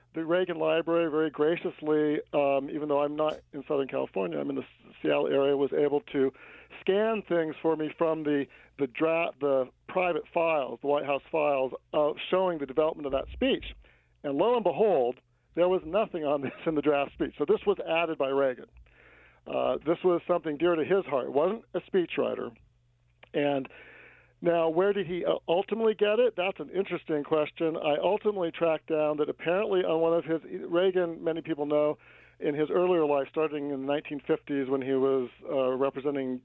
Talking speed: 185 wpm